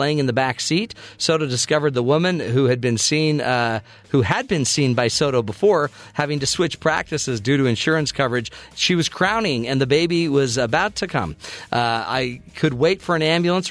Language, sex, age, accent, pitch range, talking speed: English, male, 40-59, American, 125-160 Hz, 200 wpm